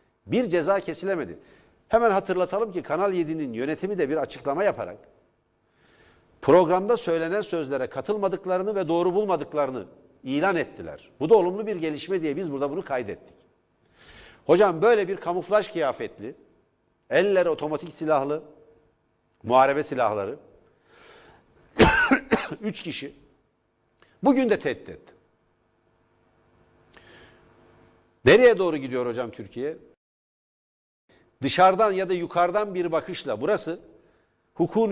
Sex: male